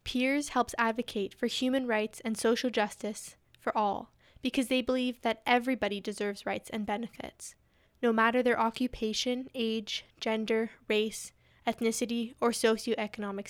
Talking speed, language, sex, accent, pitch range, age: 135 wpm, English, female, American, 215-250 Hz, 10-29